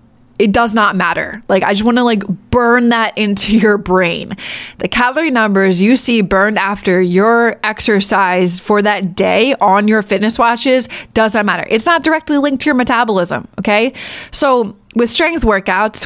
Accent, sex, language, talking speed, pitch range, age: American, female, English, 165 wpm, 195-235 Hz, 20-39